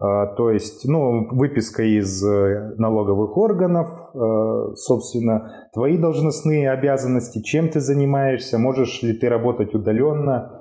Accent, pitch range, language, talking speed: native, 115-140 Hz, Russian, 105 wpm